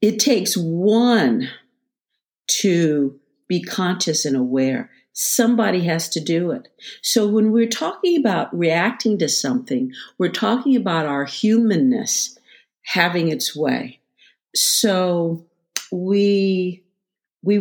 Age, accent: 50-69, American